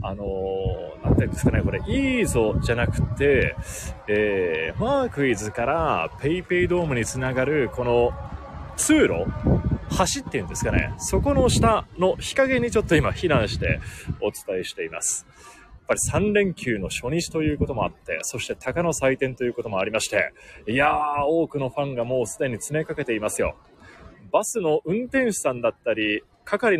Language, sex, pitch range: Japanese, male, 125-180 Hz